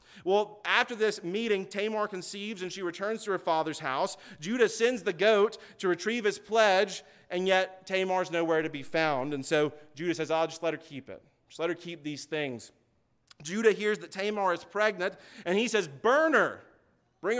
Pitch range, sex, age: 165-210 Hz, male, 30-49